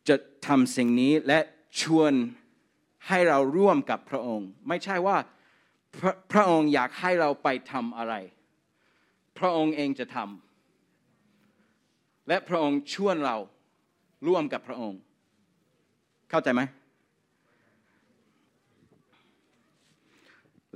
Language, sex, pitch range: Thai, male, 125-195 Hz